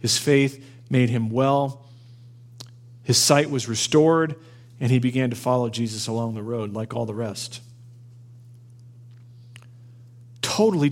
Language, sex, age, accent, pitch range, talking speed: English, male, 40-59, American, 120-125 Hz, 125 wpm